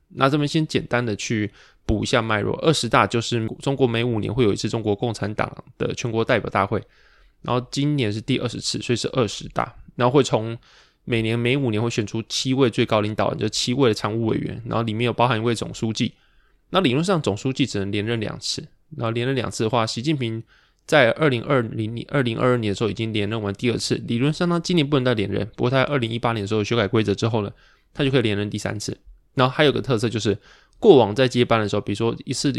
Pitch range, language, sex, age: 110-130 Hz, Chinese, male, 20-39